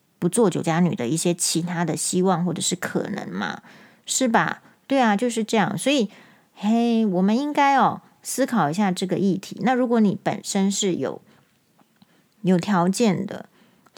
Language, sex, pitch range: Chinese, female, 175-225 Hz